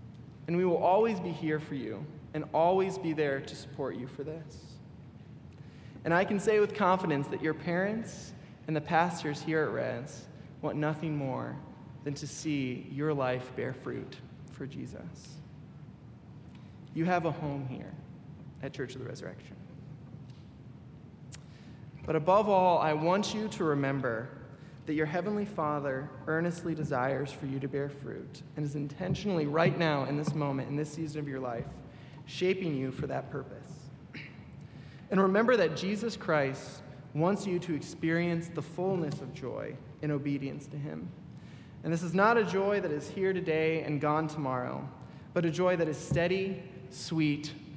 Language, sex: English, male